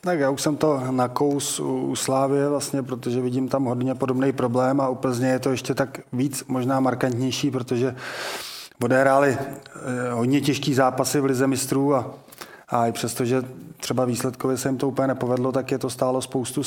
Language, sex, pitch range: Czech, male, 125-135 Hz